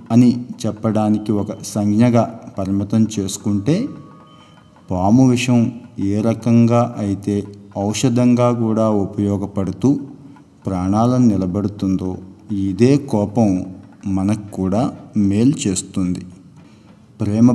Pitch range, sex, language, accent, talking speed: 95-115 Hz, male, Telugu, native, 80 wpm